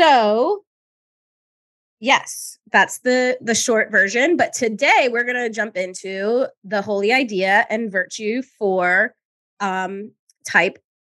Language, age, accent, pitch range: English, 20-39, American, 190-230 Hz